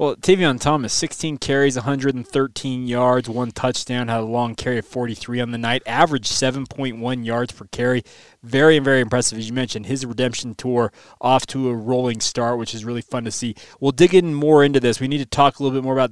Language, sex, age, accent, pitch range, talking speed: English, male, 20-39, American, 125-150 Hz, 215 wpm